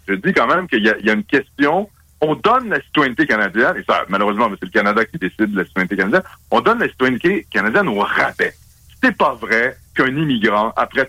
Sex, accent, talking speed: male, French, 225 wpm